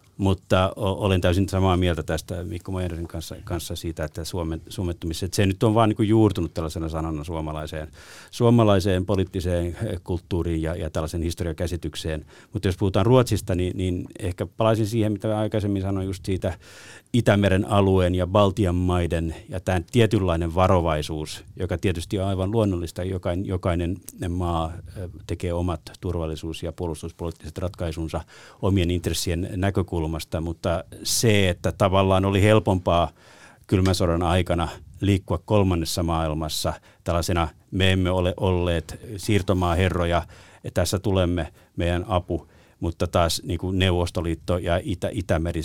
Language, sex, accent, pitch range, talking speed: Finnish, male, native, 85-100 Hz, 135 wpm